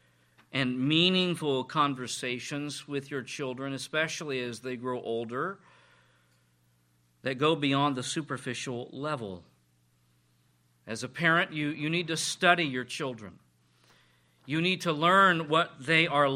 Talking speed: 125 wpm